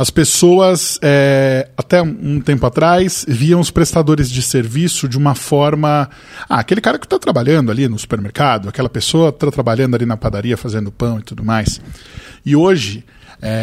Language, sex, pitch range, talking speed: Portuguese, male, 125-160 Hz, 175 wpm